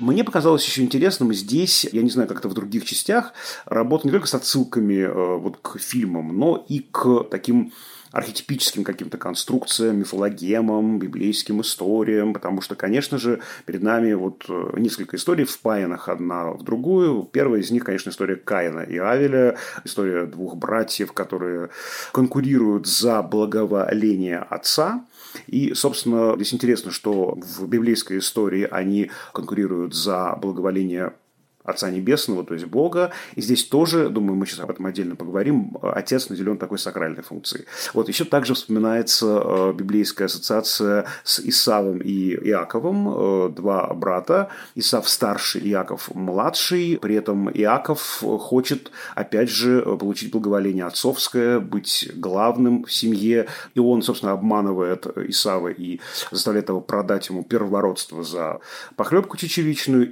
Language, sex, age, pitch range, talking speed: Russian, male, 30-49, 95-125 Hz, 135 wpm